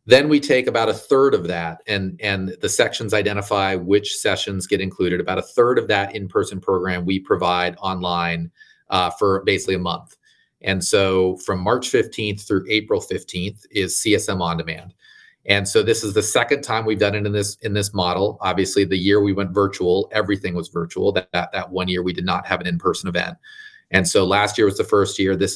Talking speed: 210 wpm